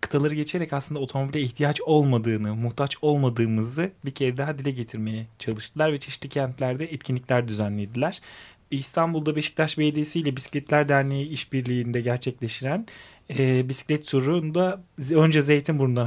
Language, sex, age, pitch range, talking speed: Turkish, male, 30-49, 125-150 Hz, 120 wpm